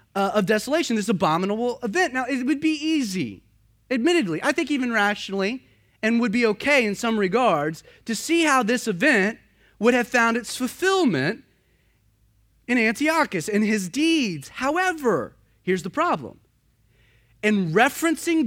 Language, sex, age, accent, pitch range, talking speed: English, male, 30-49, American, 190-285 Hz, 145 wpm